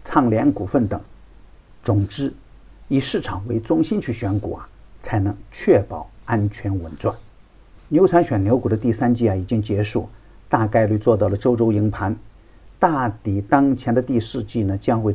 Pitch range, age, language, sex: 100-120 Hz, 50-69, Chinese, male